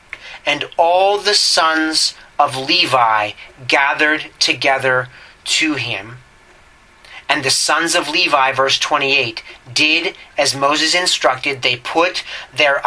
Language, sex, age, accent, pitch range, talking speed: English, male, 30-49, American, 130-165 Hz, 110 wpm